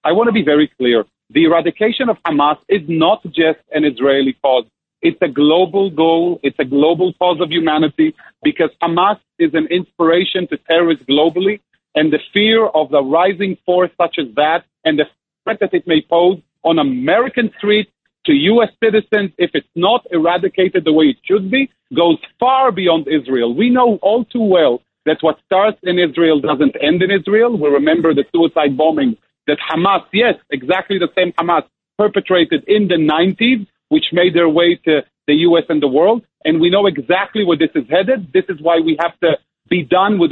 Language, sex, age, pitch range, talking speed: English, male, 40-59, 160-210 Hz, 190 wpm